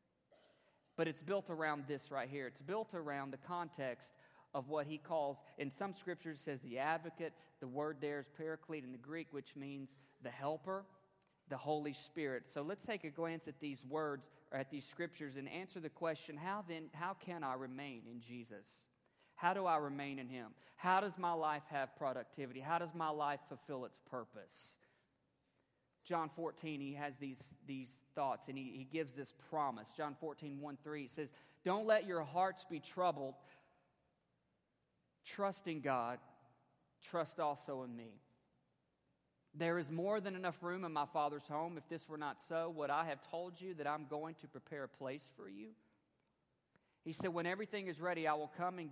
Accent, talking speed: American, 185 wpm